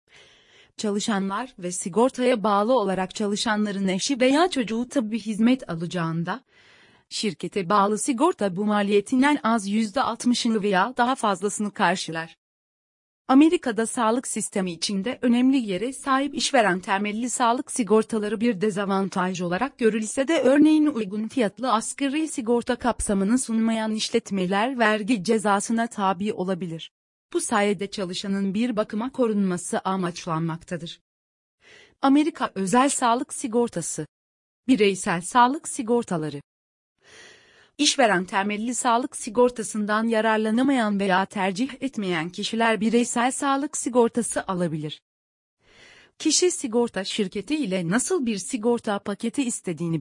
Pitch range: 195-250 Hz